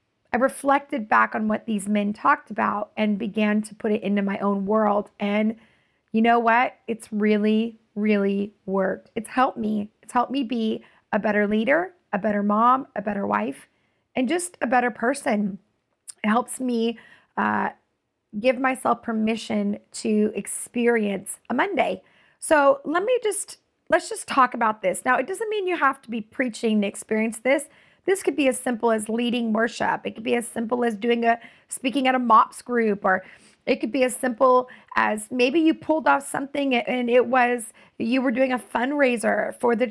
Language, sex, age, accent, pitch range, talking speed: English, female, 30-49, American, 215-270 Hz, 185 wpm